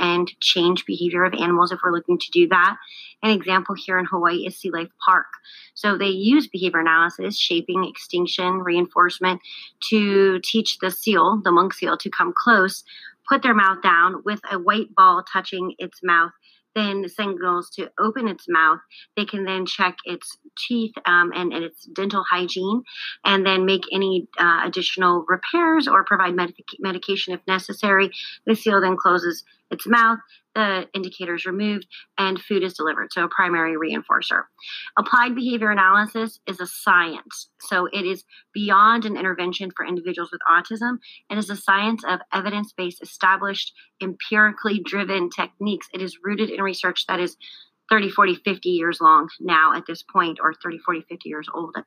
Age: 30-49